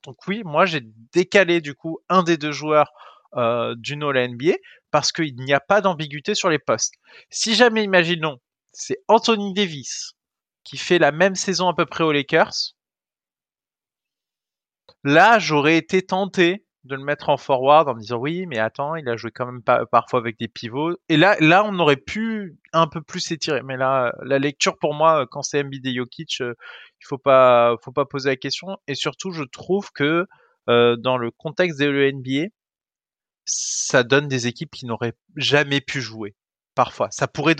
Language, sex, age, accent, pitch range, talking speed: French, male, 20-39, French, 125-175 Hz, 185 wpm